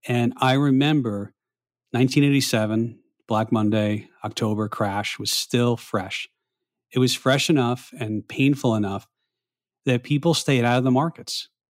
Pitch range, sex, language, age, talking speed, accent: 110-130 Hz, male, English, 40-59, 130 wpm, American